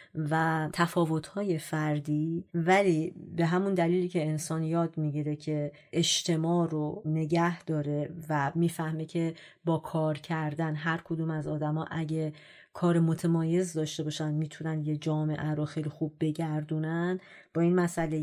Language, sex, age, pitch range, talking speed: Persian, female, 30-49, 155-175 Hz, 130 wpm